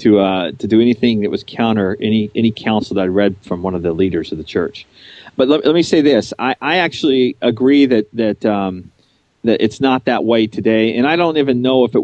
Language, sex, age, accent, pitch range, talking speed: English, male, 40-59, American, 100-120 Hz, 240 wpm